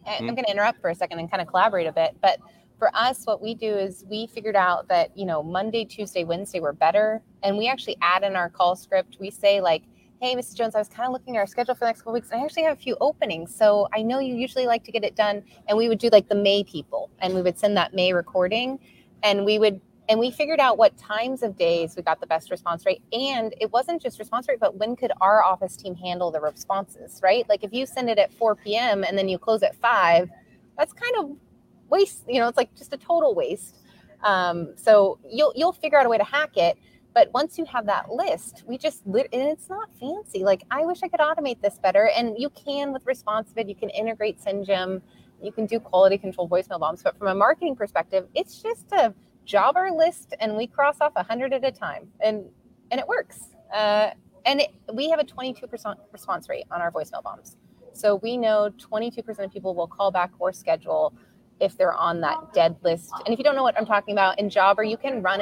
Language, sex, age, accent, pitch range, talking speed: English, female, 20-39, American, 195-260 Hz, 240 wpm